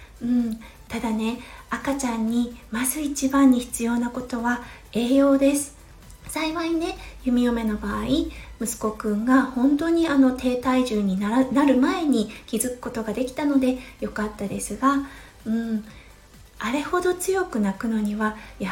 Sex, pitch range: female, 225-280 Hz